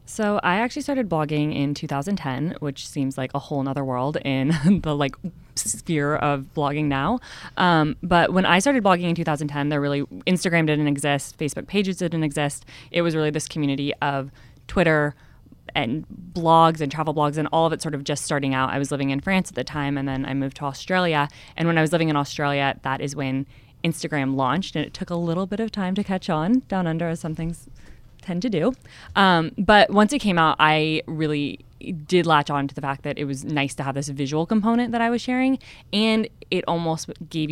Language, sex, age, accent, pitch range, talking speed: English, female, 20-39, American, 140-175 Hz, 215 wpm